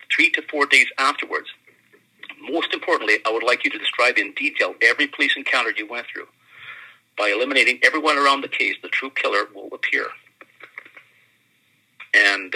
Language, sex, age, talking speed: English, male, 40-59, 160 wpm